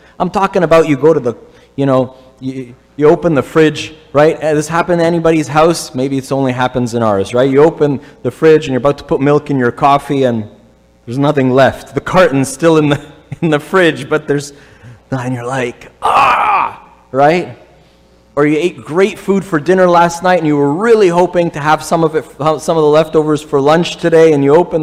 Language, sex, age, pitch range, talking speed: English, male, 30-49, 125-160 Hz, 215 wpm